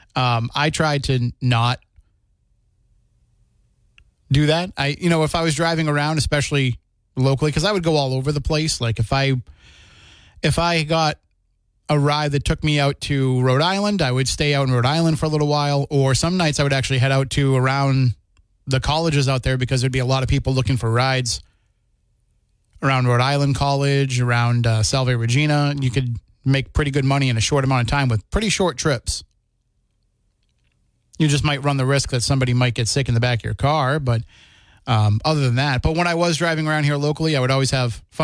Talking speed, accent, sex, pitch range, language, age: 210 wpm, American, male, 115-145 Hz, English, 20-39